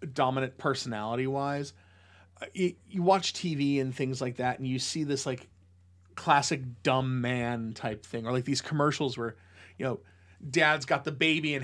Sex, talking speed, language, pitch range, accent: male, 165 wpm, English, 90-140 Hz, American